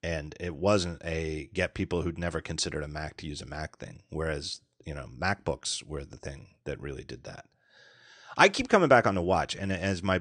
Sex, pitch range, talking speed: male, 90-115 Hz, 215 wpm